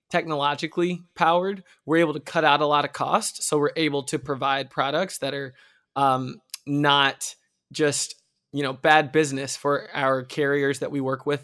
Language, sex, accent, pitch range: English, male, American, 140-170 Hz